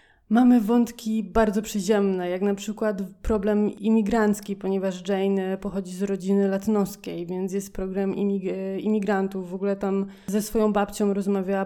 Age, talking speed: 20-39, 140 wpm